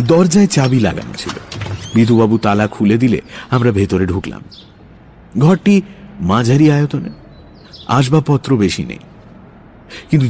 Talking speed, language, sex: 95 wpm, English, male